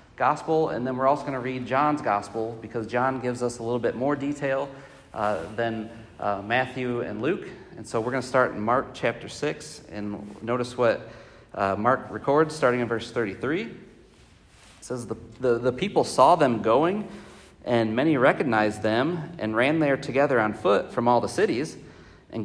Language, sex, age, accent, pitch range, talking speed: English, male, 40-59, American, 105-140 Hz, 185 wpm